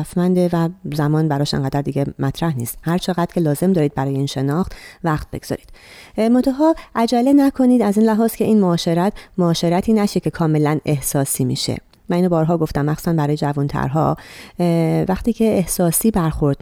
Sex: female